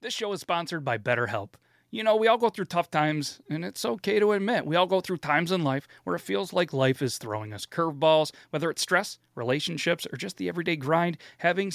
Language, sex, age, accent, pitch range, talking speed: English, male, 30-49, American, 125-170 Hz, 230 wpm